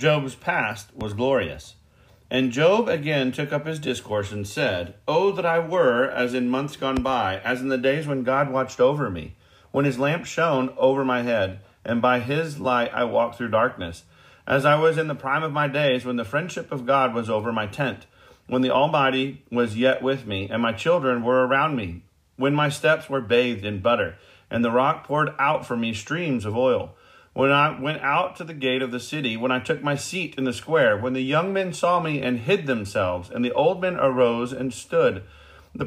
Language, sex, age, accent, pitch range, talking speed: English, male, 40-59, American, 120-145 Hz, 215 wpm